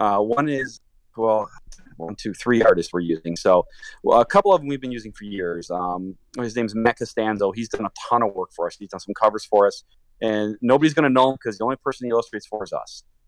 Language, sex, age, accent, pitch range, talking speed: English, male, 30-49, American, 90-120 Hz, 255 wpm